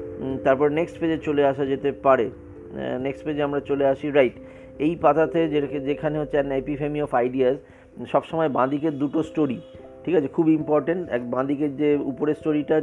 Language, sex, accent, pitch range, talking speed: Bengali, male, native, 130-150 Hz, 155 wpm